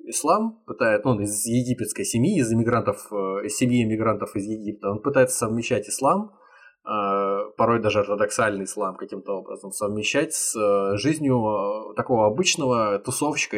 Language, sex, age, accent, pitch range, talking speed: Russian, male, 20-39, native, 105-130 Hz, 130 wpm